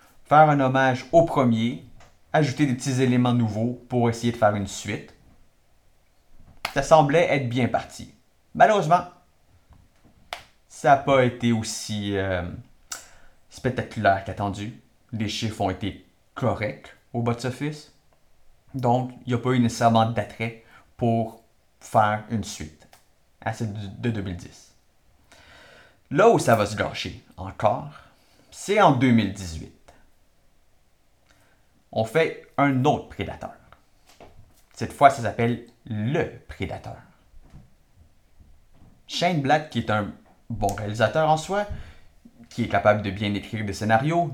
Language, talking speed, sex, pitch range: French, 125 wpm, male, 100-130 Hz